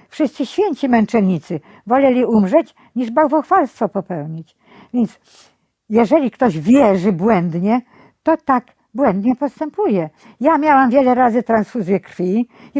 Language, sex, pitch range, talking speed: Polish, female, 215-285 Hz, 115 wpm